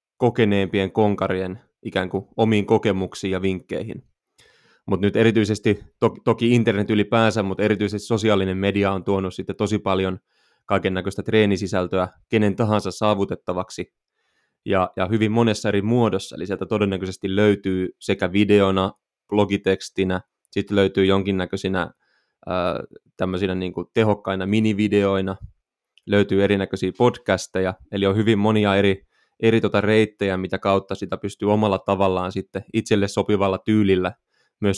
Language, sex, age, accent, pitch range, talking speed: Finnish, male, 20-39, native, 95-105 Hz, 125 wpm